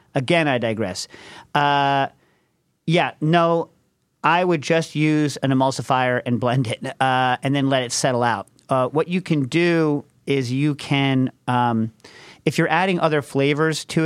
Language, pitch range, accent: English, 125-155 Hz, American